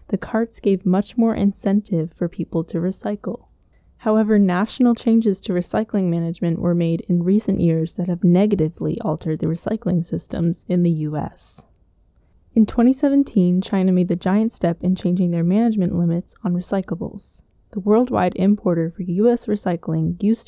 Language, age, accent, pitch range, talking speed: English, 10-29, American, 170-210 Hz, 150 wpm